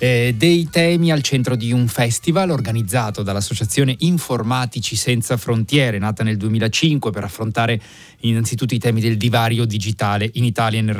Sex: male